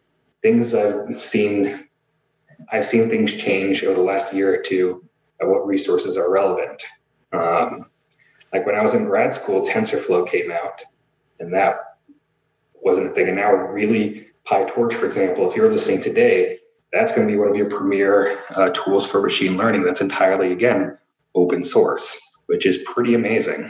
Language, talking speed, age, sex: English, 165 wpm, 30-49, male